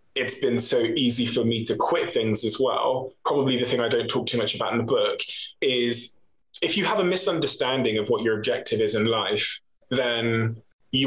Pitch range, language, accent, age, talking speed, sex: 115-145 Hz, English, British, 20-39, 205 wpm, male